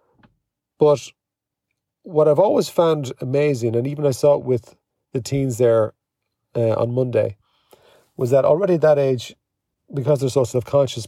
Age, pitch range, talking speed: 40-59, 120-145 Hz, 150 wpm